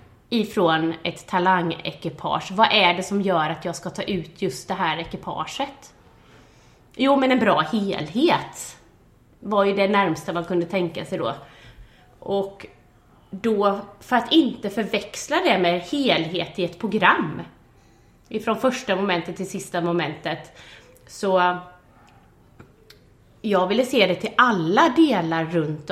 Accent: native